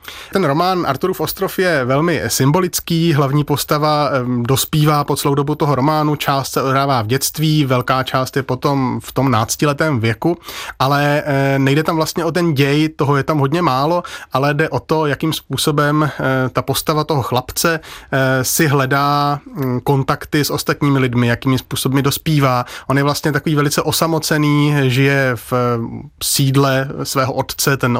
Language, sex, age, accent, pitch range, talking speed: Czech, male, 30-49, native, 125-145 Hz, 150 wpm